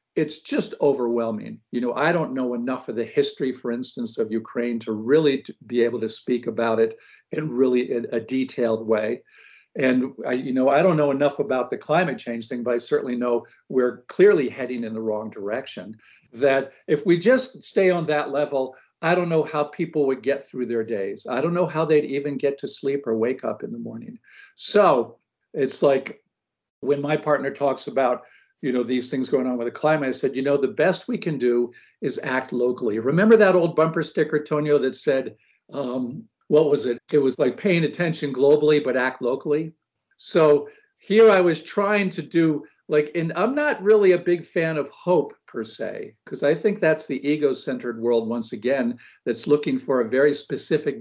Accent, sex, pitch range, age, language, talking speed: American, male, 125-165 Hz, 50-69, English, 200 wpm